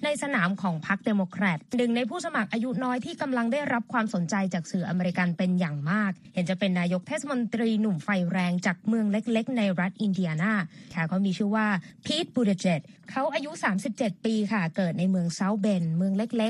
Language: Thai